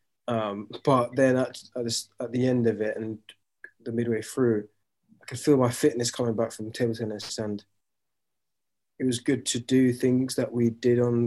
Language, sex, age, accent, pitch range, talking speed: English, male, 20-39, British, 110-130 Hz, 180 wpm